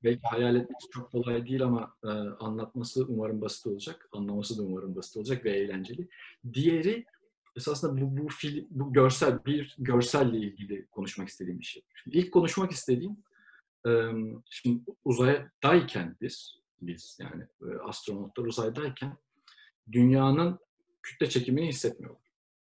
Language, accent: Turkish, native